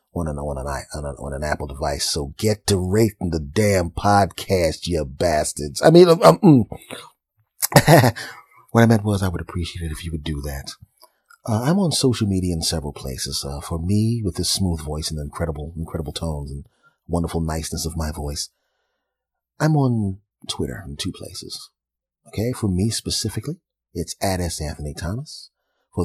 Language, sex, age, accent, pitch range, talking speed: English, male, 30-49, American, 80-105 Hz, 165 wpm